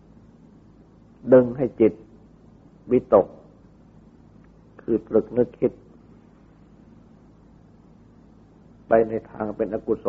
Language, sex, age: Thai, male, 60-79